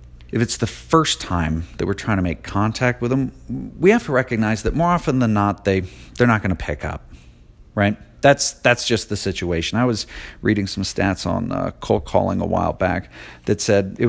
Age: 40-59